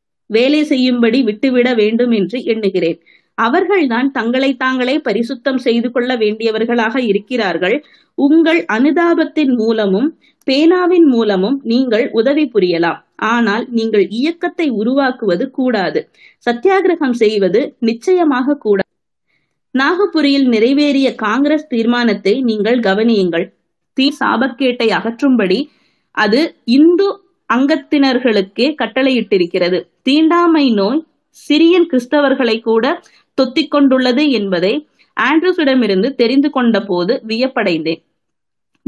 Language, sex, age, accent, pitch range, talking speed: Tamil, female, 20-39, native, 220-290 Hz, 85 wpm